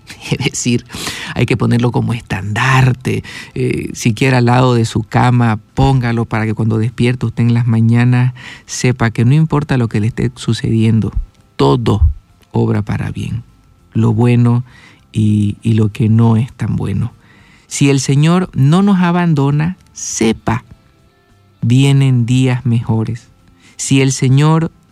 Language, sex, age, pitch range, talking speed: Spanish, male, 50-69, 115-135 Hz, 140 wpm